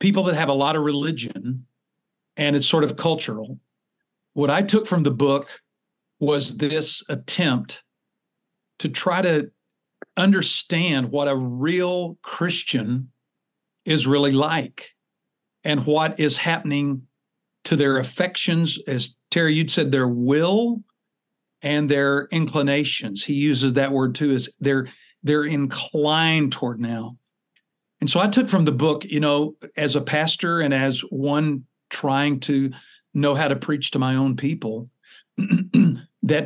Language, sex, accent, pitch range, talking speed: English, male, American, 140-170 Hz, 140 wpm